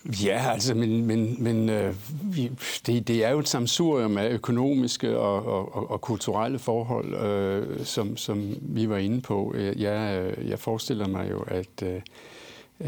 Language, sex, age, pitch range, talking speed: Danish, male, 60-79, 105-125 Hz, 165 wpm